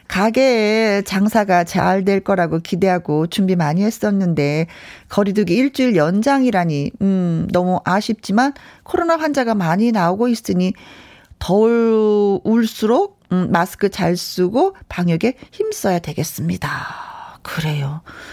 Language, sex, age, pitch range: Korean, female, 40-59, 180-265 Hz